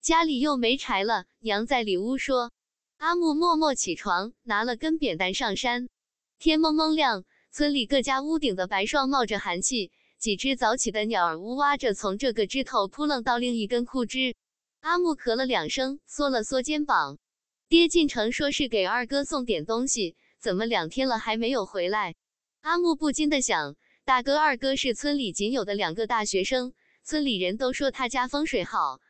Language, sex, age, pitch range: English, female, 20-39, 220-285 Hz